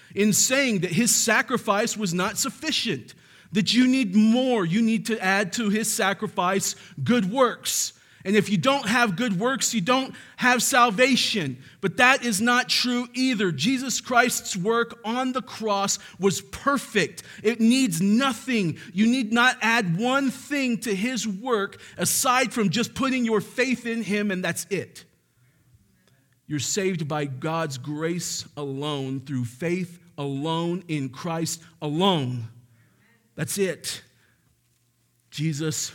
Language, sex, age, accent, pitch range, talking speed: English, male, 40-59, American, 150-220 Hz, 140 wpm